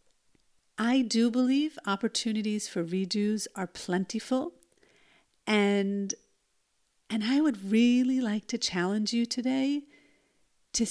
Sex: female